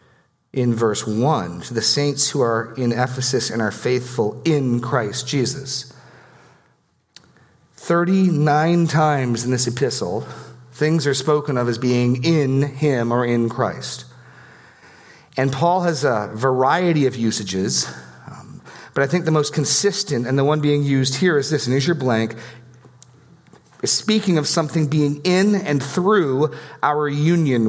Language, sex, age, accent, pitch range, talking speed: English, male, 40-59, American, 120-150 Hz, 145 wpm